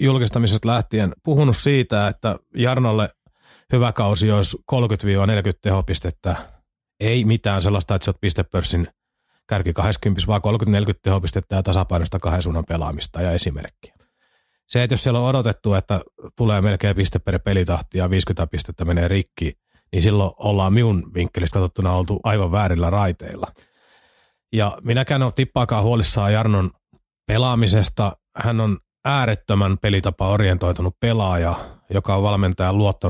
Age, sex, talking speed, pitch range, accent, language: 30-49, male, 130 wpm, 95-115 Hz, native, Finnish